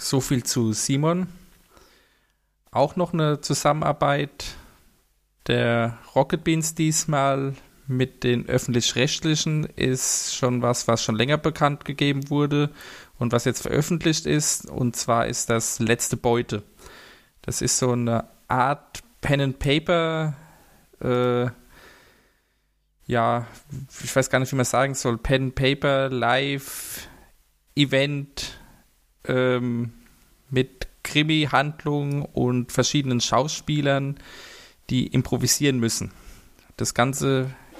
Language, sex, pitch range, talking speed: German, male, 120-145 Hz, 105 wpm